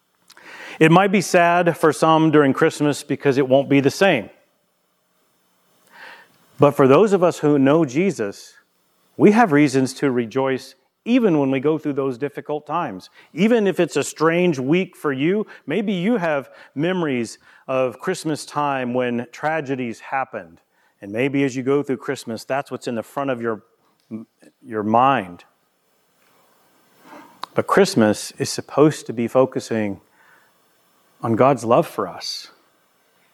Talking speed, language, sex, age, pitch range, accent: 145 wpm, English, male, 40-59, 130-165 Hz, American